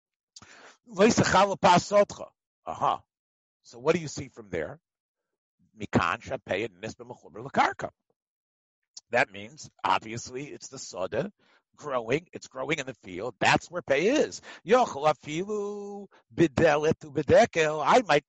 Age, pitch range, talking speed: 50-69, 145-210 Hz, 85 wpm